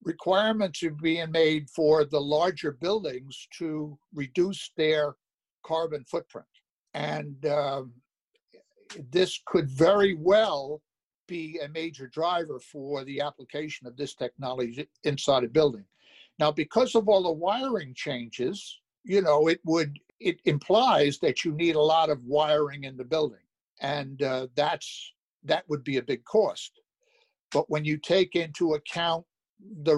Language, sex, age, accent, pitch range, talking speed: English, male, 60-79, American, 145-175 Hz, 140 wpm